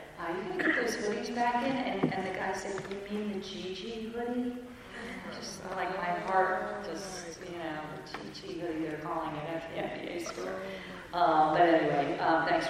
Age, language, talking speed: 40-59, English, 180 wpm